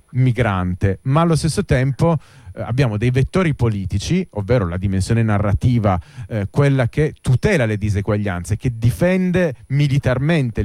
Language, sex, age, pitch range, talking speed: Italian, male, 30-49, 105-135 Hz, 125 wpm